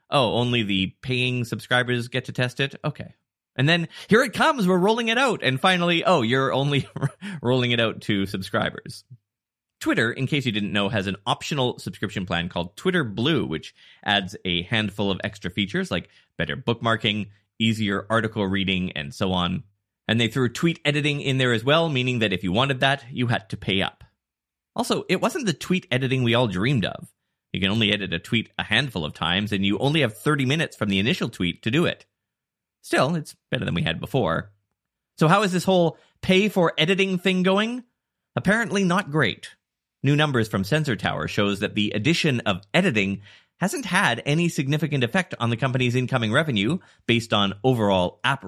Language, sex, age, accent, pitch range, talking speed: English, male, 20-39, American, 100-150 Hz, 190 wpm